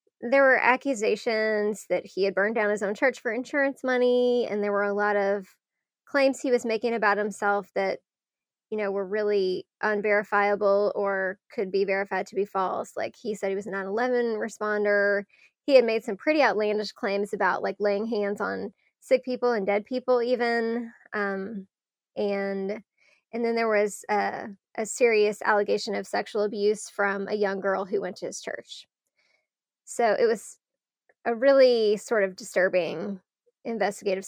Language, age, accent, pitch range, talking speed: English, 10-29, American, 200-240 Hz, 170 wpm